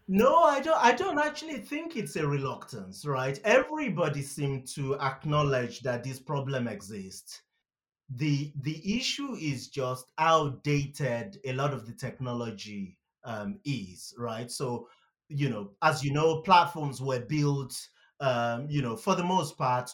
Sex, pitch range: male, 125-165 Hz